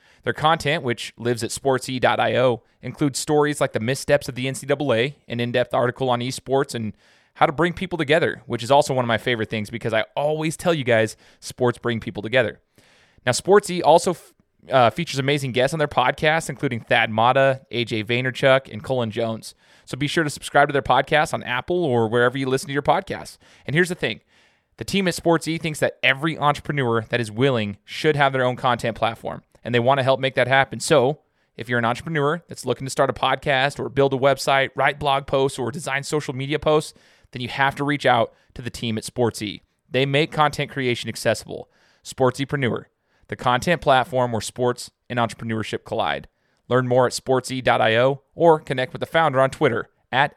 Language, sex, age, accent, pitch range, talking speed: English, male, 20-39, American, 120-145 Hz, 200 wpm